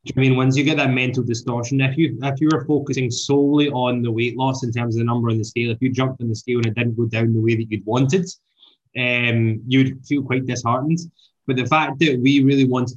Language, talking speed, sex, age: English, 255 wpm, male, 10-29